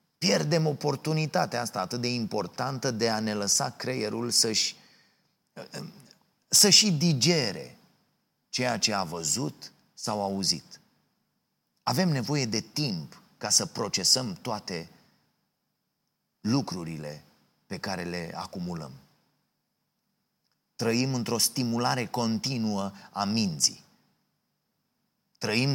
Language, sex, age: Romanian, male, 30-49